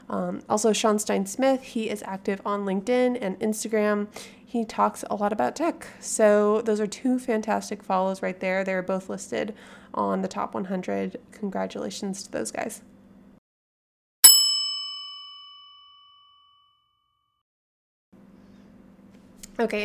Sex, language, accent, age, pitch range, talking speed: female, English, American, 20-39, 185-235 Hz, 115 wpm